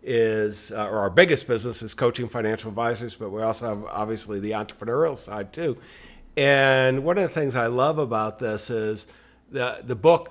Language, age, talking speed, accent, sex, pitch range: English, 50-69, 185 wpm, American, male, 115-140 Hz